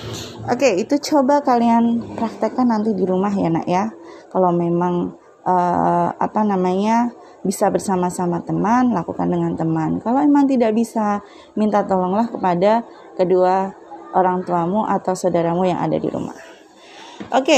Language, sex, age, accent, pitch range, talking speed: Indonesian, female, 20-39, native, 190-275 Hz, 135 wpm